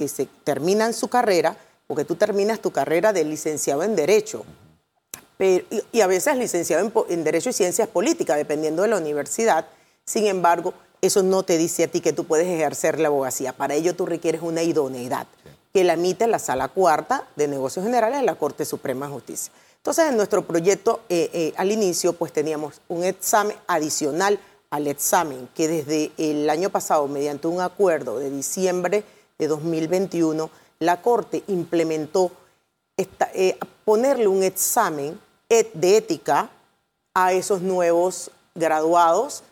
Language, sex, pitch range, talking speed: Spanish, female, 155-200 Hz, 160 wpm